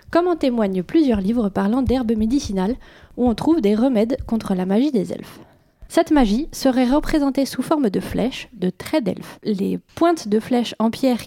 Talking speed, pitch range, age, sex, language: 185 wpm, 215-280 Hz, 20-39, female, French